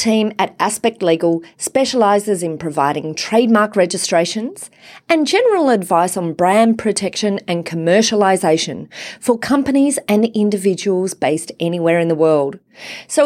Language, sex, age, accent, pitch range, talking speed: English, female, 30-49, Australian, 175-245 Hz, 120 wpm